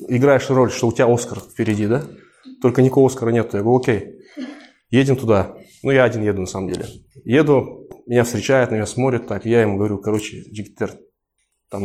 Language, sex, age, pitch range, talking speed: Russian, male, 20-39, 105-140 Hz, 185 wpm